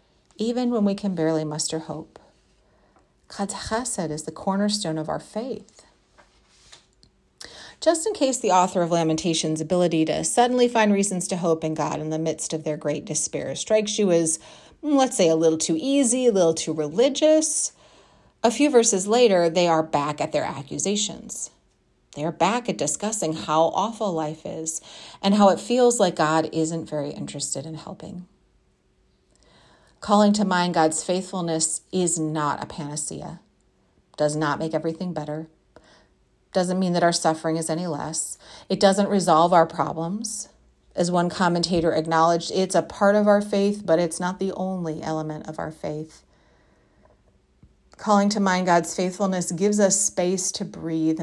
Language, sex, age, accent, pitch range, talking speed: English, female, 40-59, American, 160-200 Hz, 160 wpm